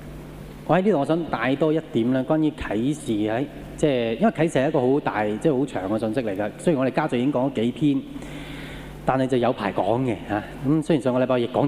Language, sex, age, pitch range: Japanese, male, 20-39, 120-155 Hz